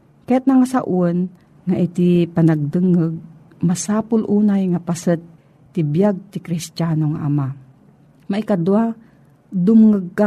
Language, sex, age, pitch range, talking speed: Filipino, female, 50-69, 160-205 Hz, 105 wpm